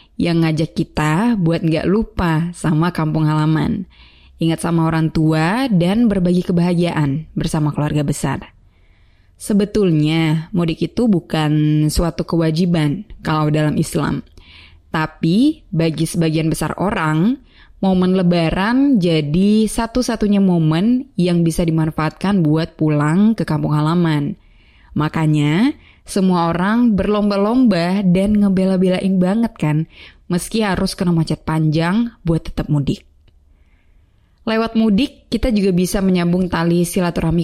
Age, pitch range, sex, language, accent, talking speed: 20-39, 155-190 Hz, female, Indonesian, native, 110 wpm